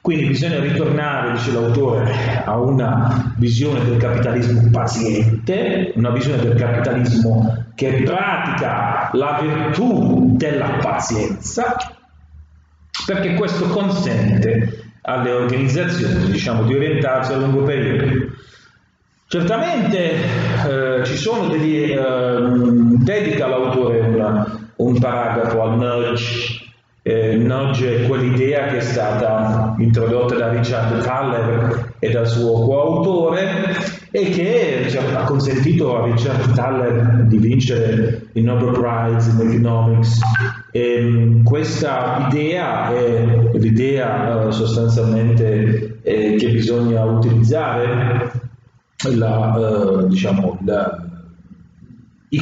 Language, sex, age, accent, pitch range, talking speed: Italian, male, 40-59, native, 115-135 Hz, 95 wpm